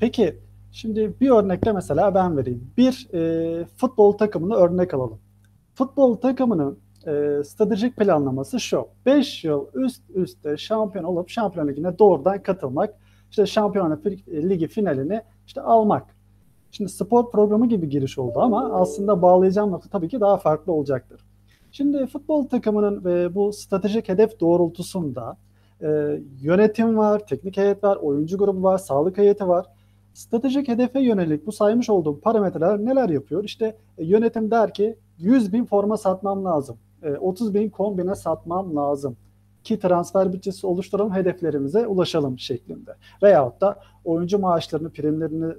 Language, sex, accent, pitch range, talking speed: Turkish, male, native, 145-210 Hz, 135 wpm